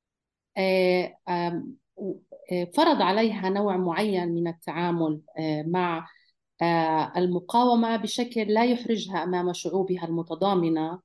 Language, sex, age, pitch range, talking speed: English, female, 40-59, 165-210 Hz, 75 wpm